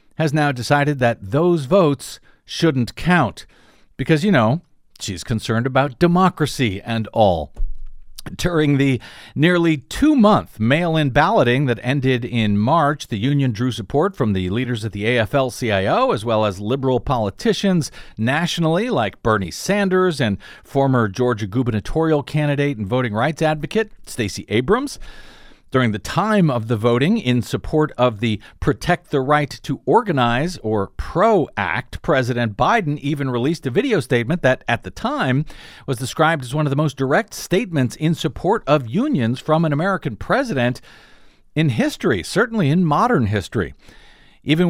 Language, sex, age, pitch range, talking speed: English, male, 50-69, 115-155 Hz, 150 wpm